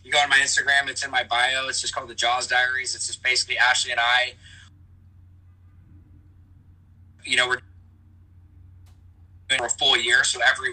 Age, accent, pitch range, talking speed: 20-39, American, 95-125 Hz, 170 wpm